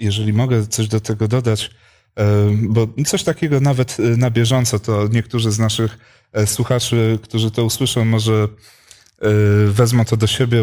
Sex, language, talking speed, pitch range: male, Polish, 140 wpm, 110-130 Hz